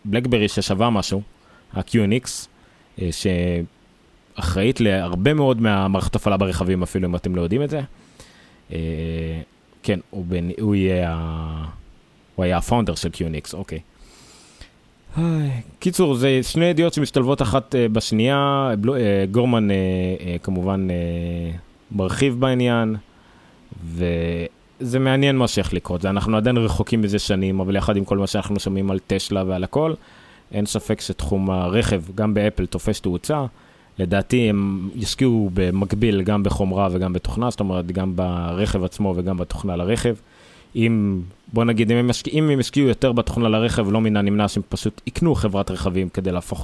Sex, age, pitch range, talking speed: male, 20-39, 90-115 Hz, 140 wpm